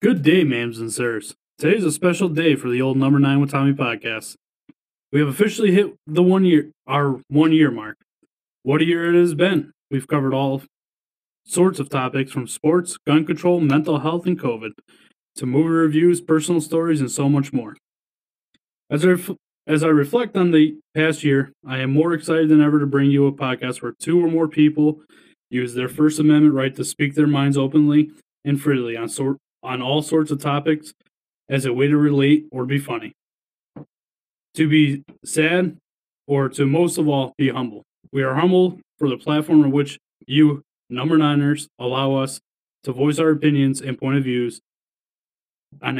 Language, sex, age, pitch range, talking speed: English, male, 20-39, 135-160 Hz, 185 wpm